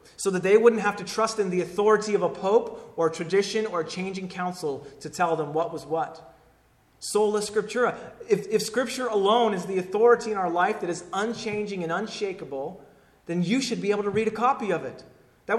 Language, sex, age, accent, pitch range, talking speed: English, male, 30-49, American, 145-210 Hz, 210 wpm